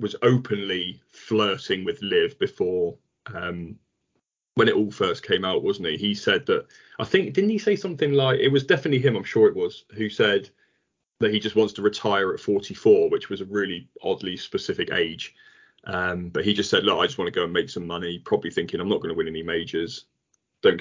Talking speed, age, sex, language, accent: 215 wpm, 20-39, male, English, British